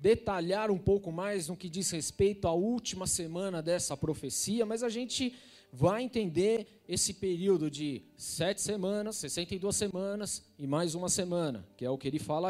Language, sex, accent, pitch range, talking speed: Portuguese, male, Brazilian, 170-245 Hz, 170 wpm